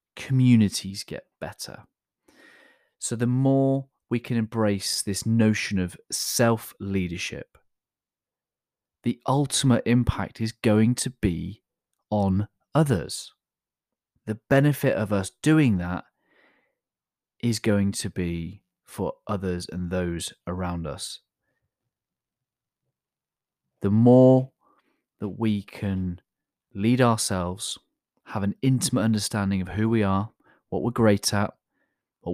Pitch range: 95-115 Hz